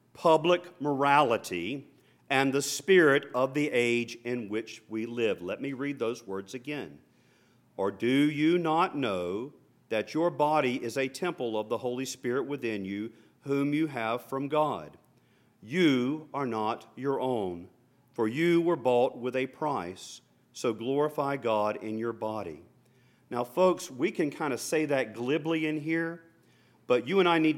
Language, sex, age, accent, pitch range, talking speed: English, male, 40-59, American, 120-175 Hz, 160 wpm